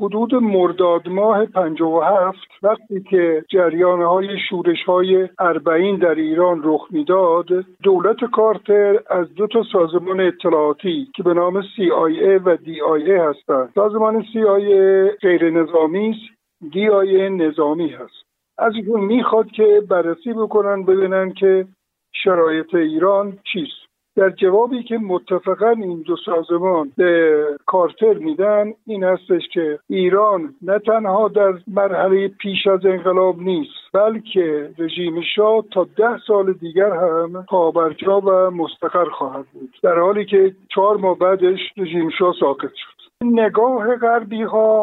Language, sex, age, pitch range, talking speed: Persian, male, 60-79, 175-215 Hz, 130 wpm